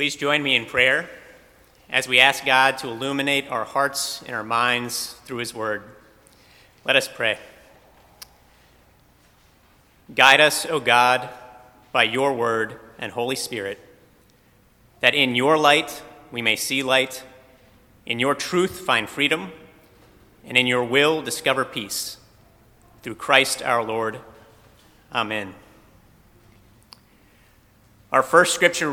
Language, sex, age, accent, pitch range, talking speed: English, male, 30-49, American, 110-140 Hz, 120 wpm